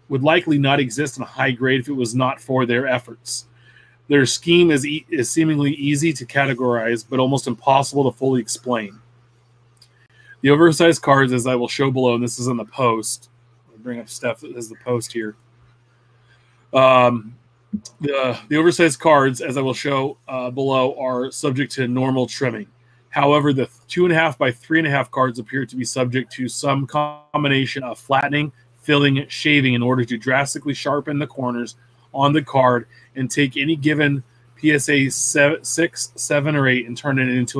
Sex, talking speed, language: male, 175 wpm, English